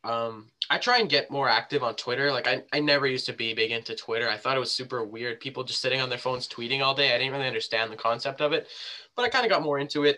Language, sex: English, male